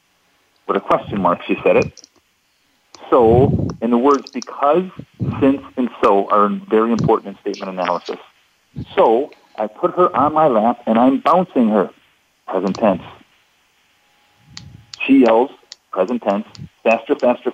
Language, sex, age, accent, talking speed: English, male, 50-69, American, 135 wpm